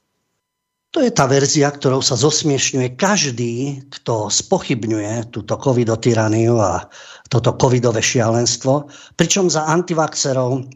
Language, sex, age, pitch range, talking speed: English, male, 50-69, 115-150 Hz, 105 wpm